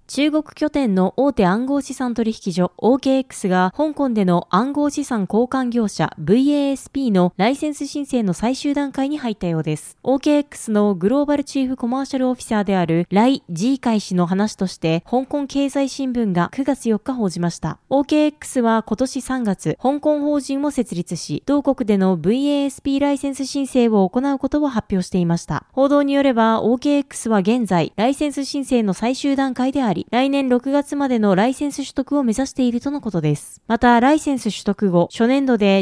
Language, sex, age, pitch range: Japanese, female, 20-39, 205-280 Hz